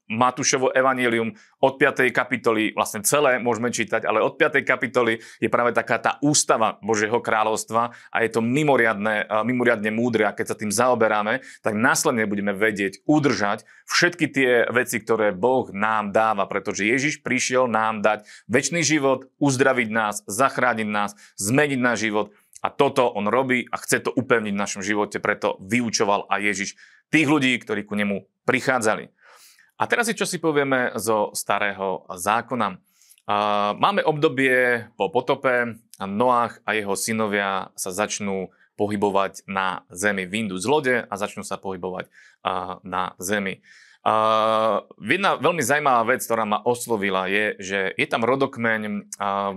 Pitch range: 100-125 Hz